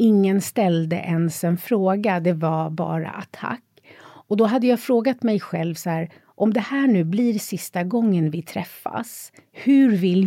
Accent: Swedish